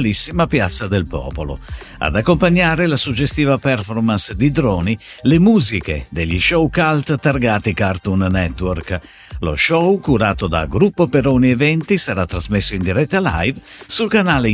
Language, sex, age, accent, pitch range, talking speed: Italian, male, 50-69, native, 95-155 Hz, 130 wpm